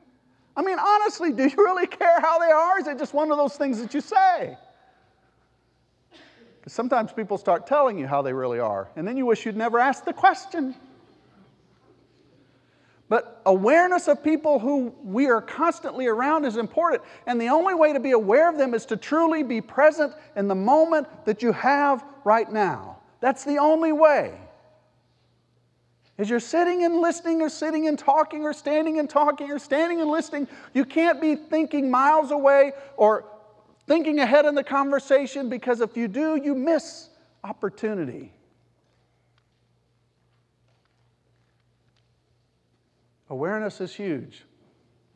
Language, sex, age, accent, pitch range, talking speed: English, male, 50-69, American, 215-305 Hz, 155 wpm